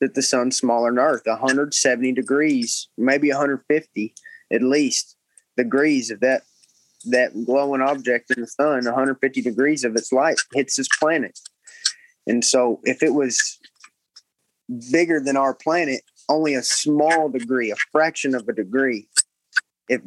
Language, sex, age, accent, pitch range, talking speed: English, male, 20-39, American, 125-150 Hz, 145 wpm